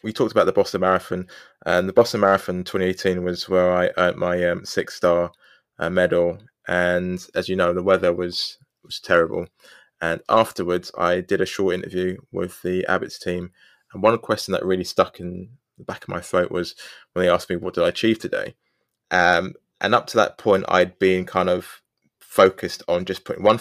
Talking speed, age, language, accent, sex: 200 wpm, 20-39, English, British, male